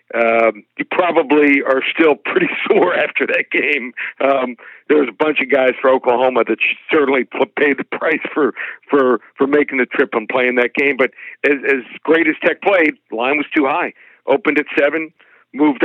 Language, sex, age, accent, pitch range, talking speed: English, male, 50-69, American, 130-160 Hz, 190 wpm